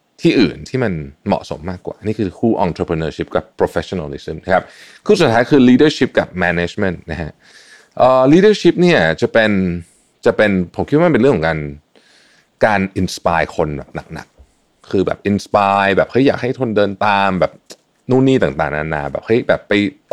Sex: male